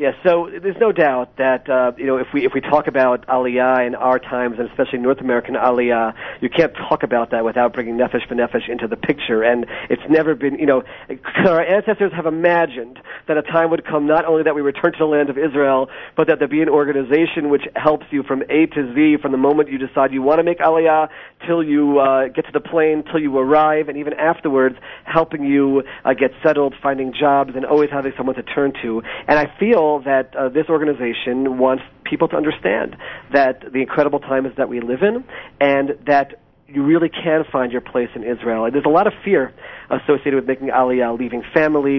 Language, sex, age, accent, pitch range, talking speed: English, male, 40-59, American, 130-155 Hz, 215 wpm